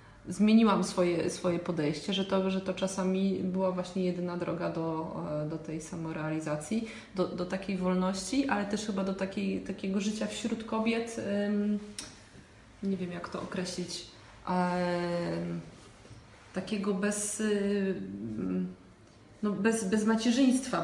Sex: female